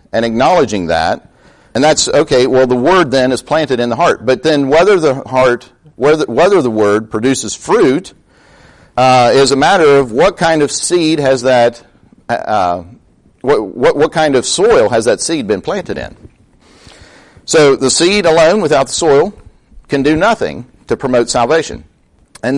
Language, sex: English, male